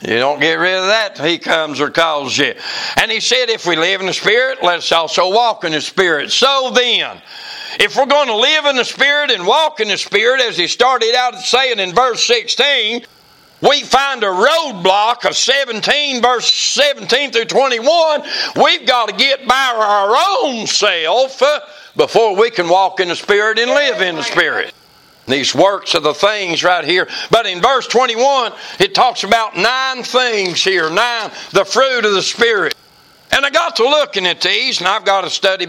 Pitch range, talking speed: 200-290 Hz, 190 wpm